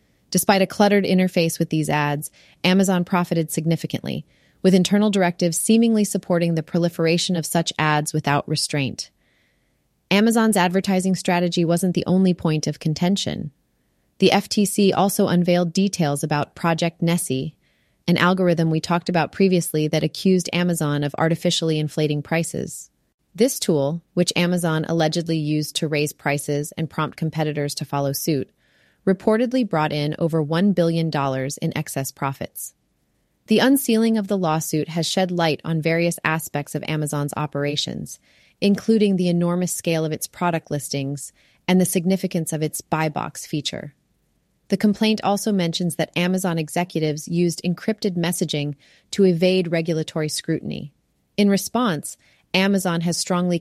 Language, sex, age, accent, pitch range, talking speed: English, female, 30-49, American, 155-185 Hz, 140 wpm